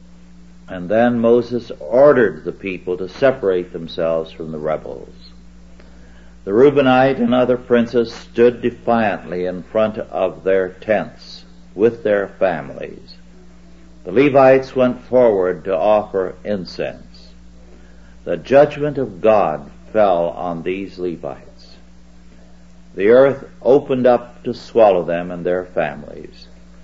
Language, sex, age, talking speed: English, male, 60-79, 115 wpm